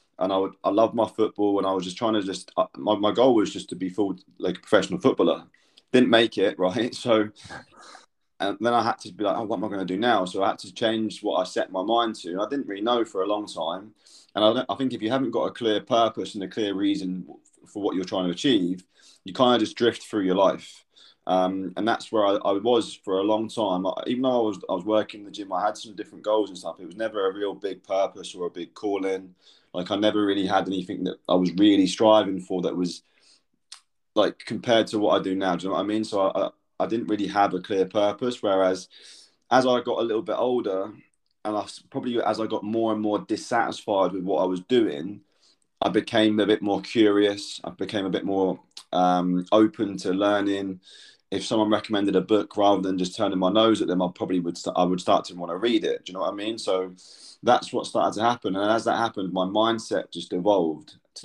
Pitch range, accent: 95-110 Hz, British